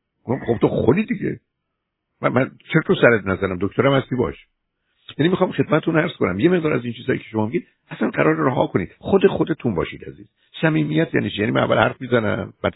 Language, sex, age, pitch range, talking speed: Persian, male, 60-79, 95-140 Hz, 195 wpm